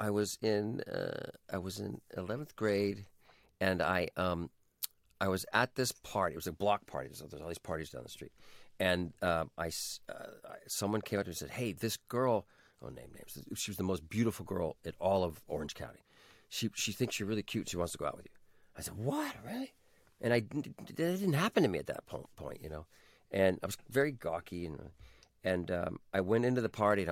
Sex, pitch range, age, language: male, 90-120 Hz, 50-69, English